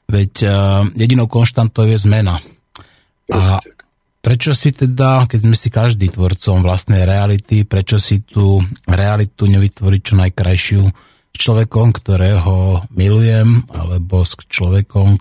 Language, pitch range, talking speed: Slovak, 95-115 Hz, 120 wpm